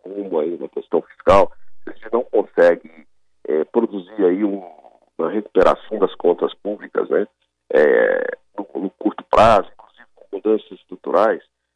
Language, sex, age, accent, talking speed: Portuguese, male, 50-69, Brazilian, 130 wpm